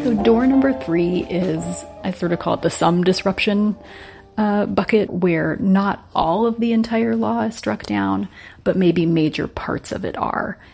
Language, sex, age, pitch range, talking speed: English, female, 30-49, 155-195 Hz, 180 wpm